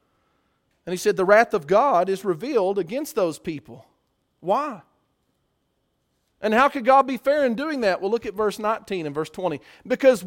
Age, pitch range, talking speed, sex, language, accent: 40-59, 170-250 Hz, 180 wpm, male, English, American